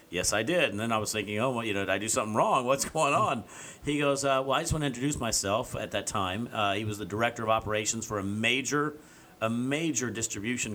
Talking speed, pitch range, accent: 250 wpm, 100-125 Hz, American